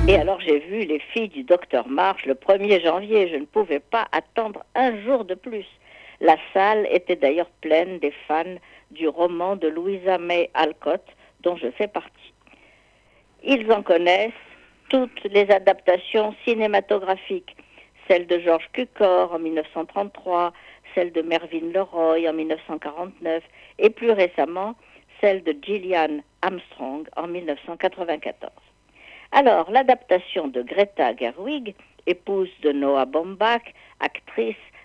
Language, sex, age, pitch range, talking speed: French, female, 60-79, 165-225 Hz, 130 wpm